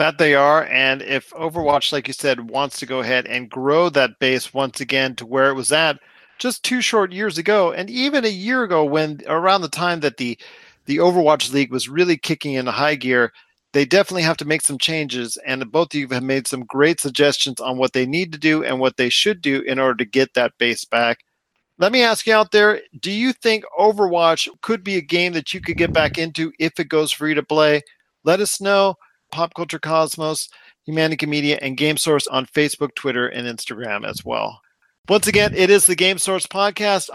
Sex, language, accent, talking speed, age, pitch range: male, English, American, 220 wpm, 40-59, 140-195 Hz